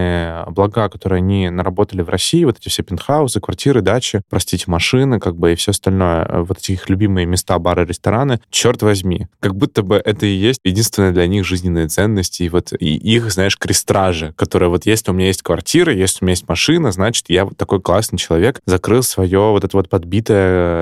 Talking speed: 200 wpm